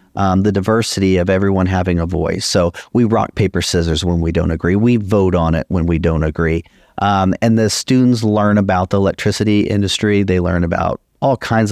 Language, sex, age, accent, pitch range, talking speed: English, male, 40-59, American, 90-115 Hz, 200 wpm